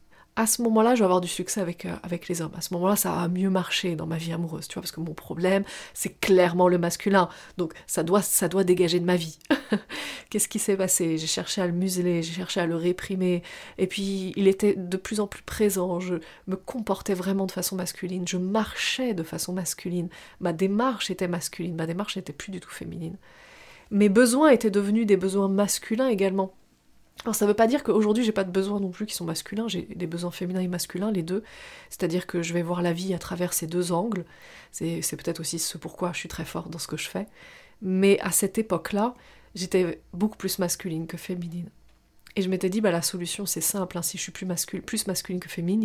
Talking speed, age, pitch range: 230 wpm, 30-49, 175-205 Hz